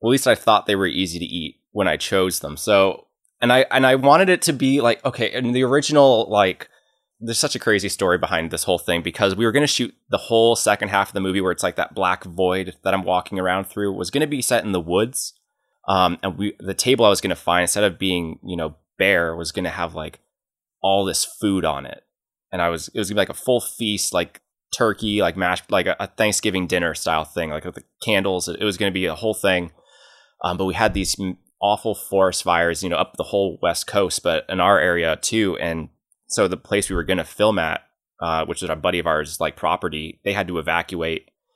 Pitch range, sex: 85-105 Hz, male